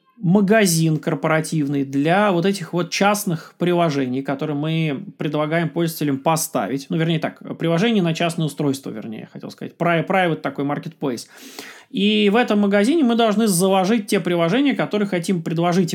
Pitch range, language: 160-210 Hz, Russian